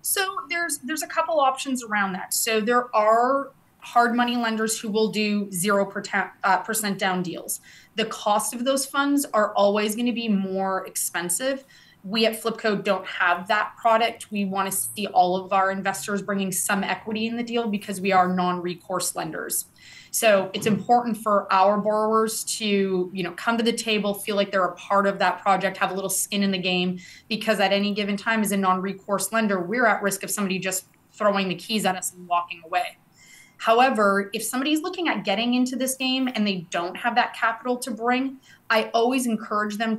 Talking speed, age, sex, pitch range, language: 200 wpm, 20-39, female, 190-230 Hz, English